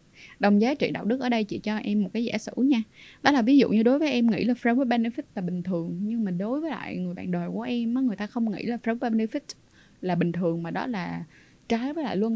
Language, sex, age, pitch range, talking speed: Vietnamese, female, 20-39, 195-250 Hz, 275 wpm